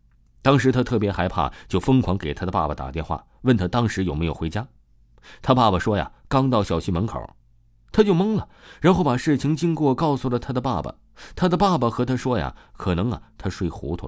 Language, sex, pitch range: Chinese, male, 85-125 Hz